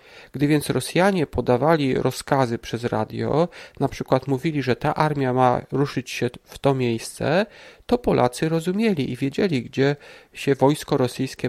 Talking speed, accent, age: 145 wpm, native, 40-59